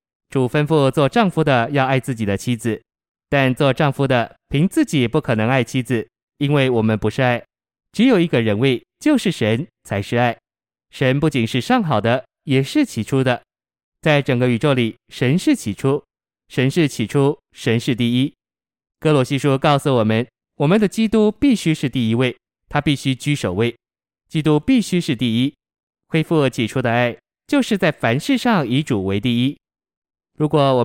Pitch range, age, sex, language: 120-155 Hz, 20-39, male, Chinese